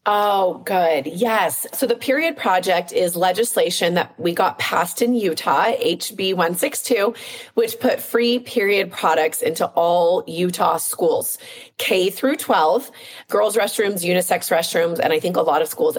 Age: 30-49